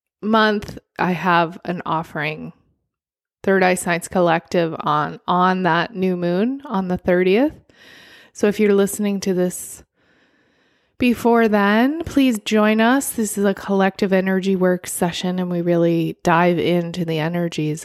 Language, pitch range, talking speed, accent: English, 180-215 Hz, 140 wpm, American